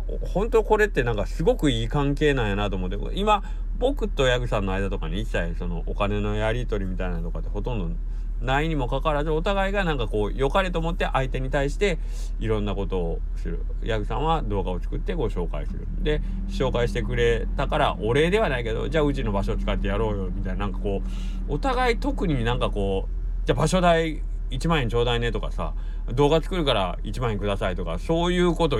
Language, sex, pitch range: Japanese, male, 95-145 Hz